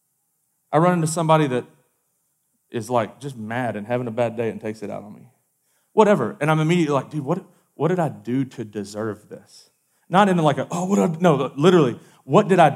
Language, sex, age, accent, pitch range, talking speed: English, male, 40-59, American, 135-200 Hz, 215 wpm